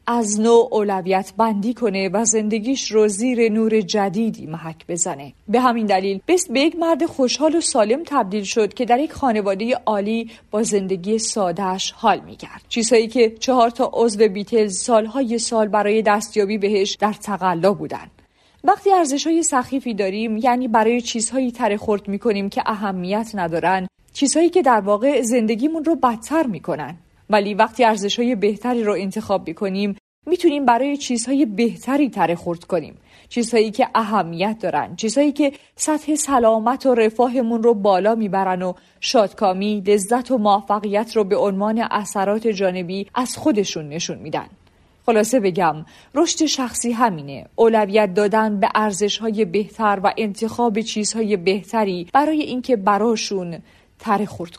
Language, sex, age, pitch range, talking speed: Persian, female, 40-59, 200-245 Hz, 145 wpm